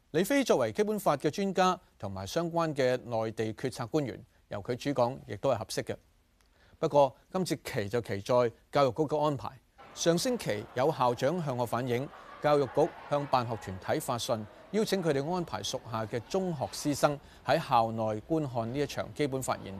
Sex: male